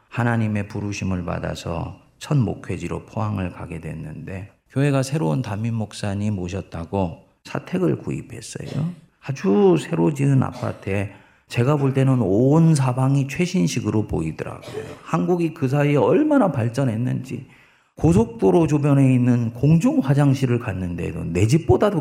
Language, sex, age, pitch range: Korean, male, 40-59, 110-165 Hz